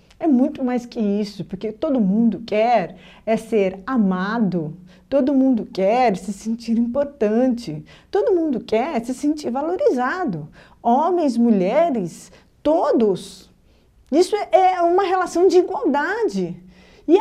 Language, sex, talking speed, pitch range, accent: Portuguese, female, 120 wpm, 215-345 Hz, Brazilian